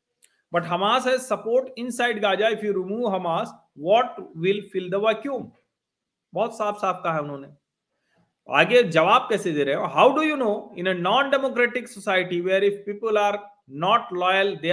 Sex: male